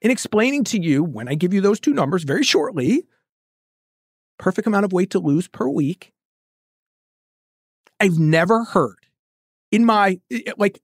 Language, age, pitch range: English, 40-59, 150-210 Hz